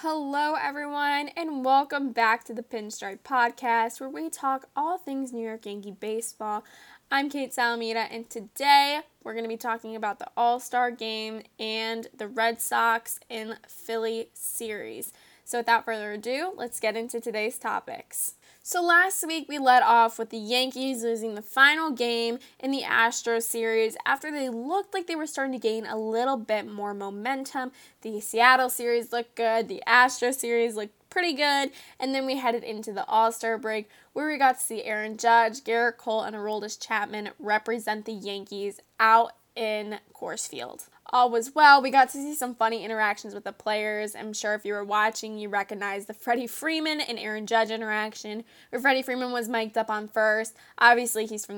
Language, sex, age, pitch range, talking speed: English, female, 10-29, 215-260 Hz, 180 wpm